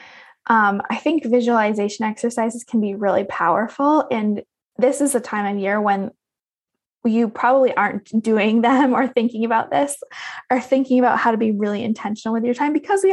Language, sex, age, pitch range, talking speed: English, female, 20-39, 210-255 Hz, 180 wpm